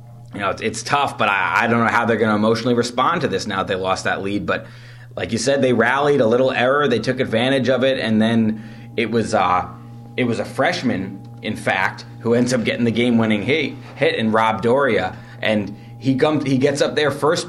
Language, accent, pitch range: English, American, 110-130 Hz